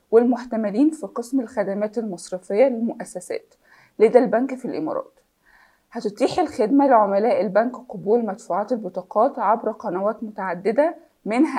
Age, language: 20-39, Arabic